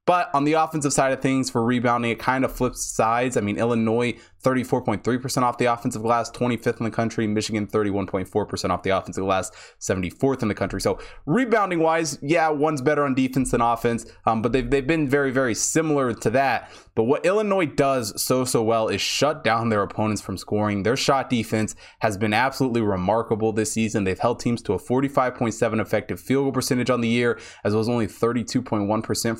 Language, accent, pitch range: English, American, 110-140 Hz